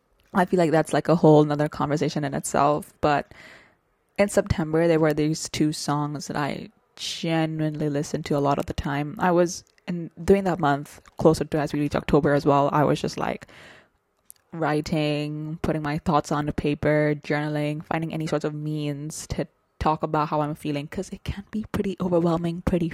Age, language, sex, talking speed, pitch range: 20-39, English, female, 190 wpm, 150-185 Hz